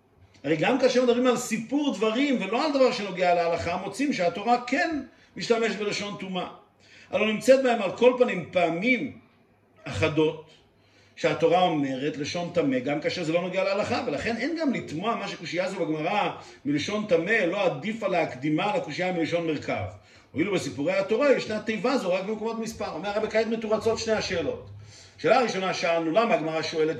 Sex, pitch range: male, 160-225 Hz